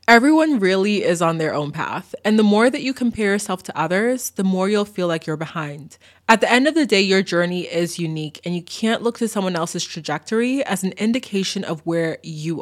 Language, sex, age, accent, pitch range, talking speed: English, female, 20-39, American, 170-235 Hz, 225 wpm